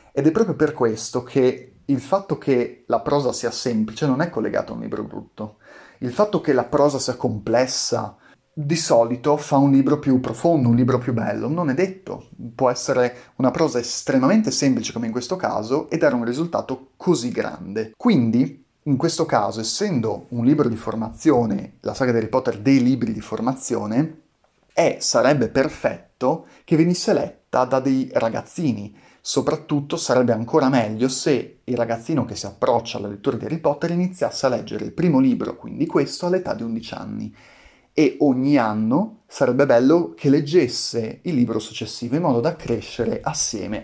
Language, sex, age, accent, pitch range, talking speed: Italian, male, 30-49, native, 115-150 Hz, 170 wpm